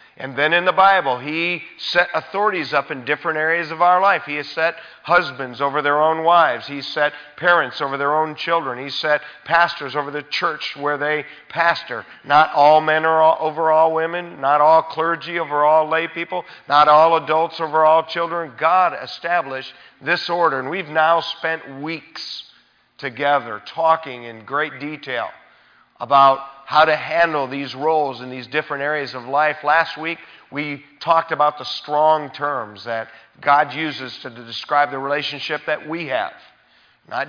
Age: 50-69